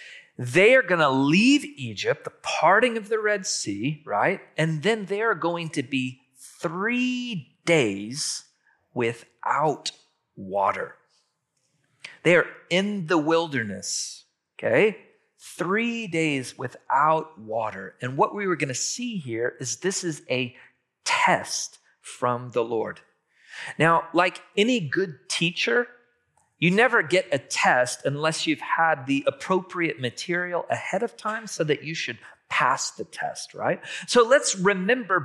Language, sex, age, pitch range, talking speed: English, male, 40-59, 130-210 Hz, 135 wpm